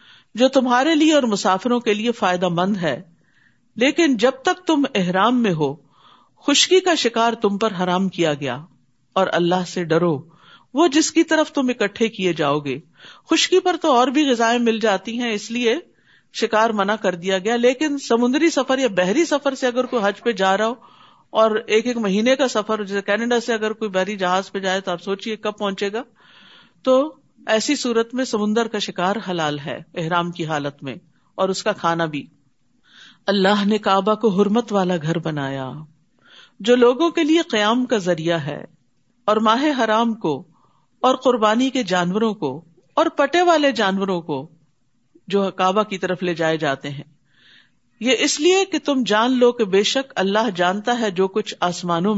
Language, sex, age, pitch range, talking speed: Urdu, female, 50-69, 180-245 Hz, 185 wpm